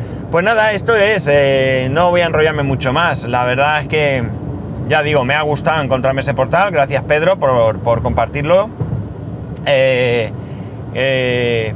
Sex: male